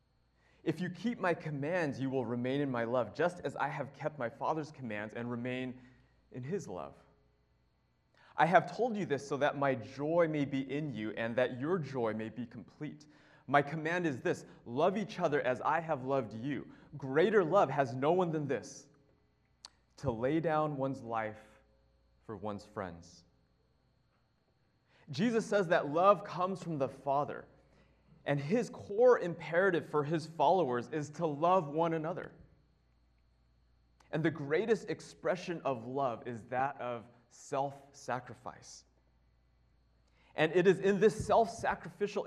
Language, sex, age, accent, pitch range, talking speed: English, male, 30-49, American, 115-160 Hz, 150 wpm